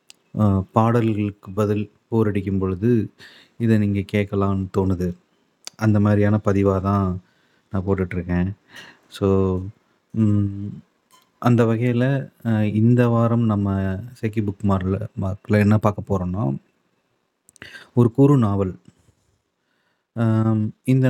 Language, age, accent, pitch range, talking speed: Tamil, 30-49, native, 100-115 Hz, 90 wpm